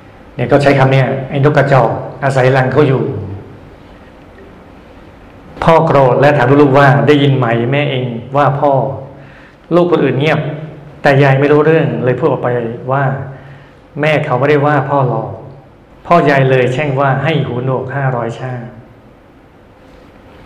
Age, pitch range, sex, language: 60-79, 125-145 Hz, male, Thai